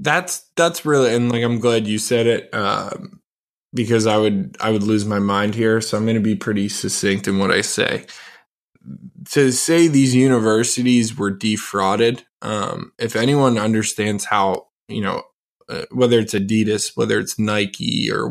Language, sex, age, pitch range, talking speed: English, male, 20-39, 110-135 Hz, 170 wpm